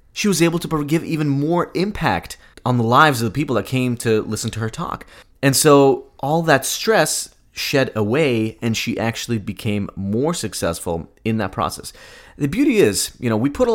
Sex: male